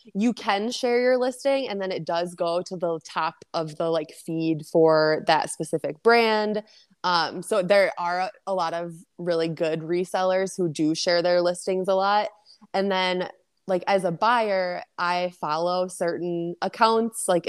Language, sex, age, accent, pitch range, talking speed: English, female, 20-39, American, 165-195 Hz, 170 wpm